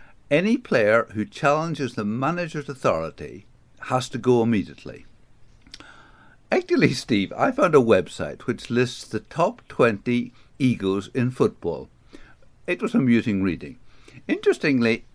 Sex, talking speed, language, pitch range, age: male, 120 wpm, English, 115-160 Hz, 60-79